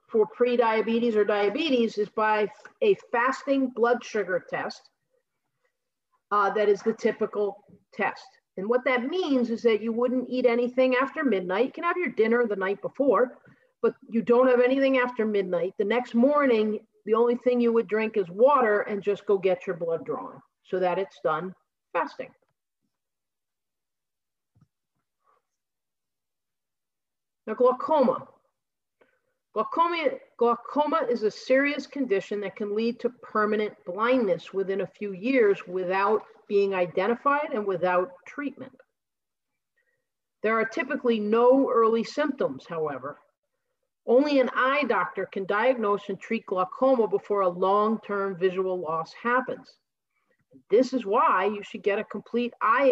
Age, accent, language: 50-69, American, English